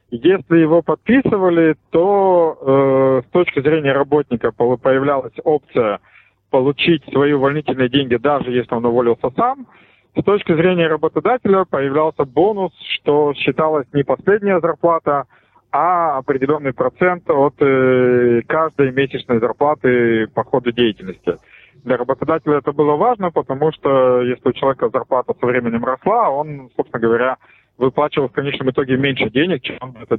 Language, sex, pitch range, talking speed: Russian, male, 130-165 Hz, 135 wpm